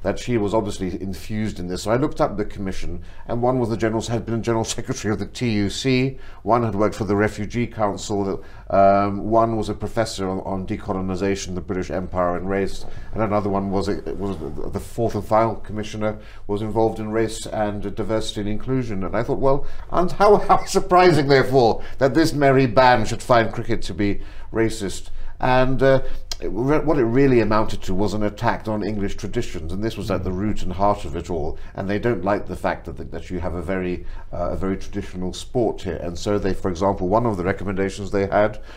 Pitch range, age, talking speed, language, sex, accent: 95-115 Hz, 60-79, 220 wpm, English, male, British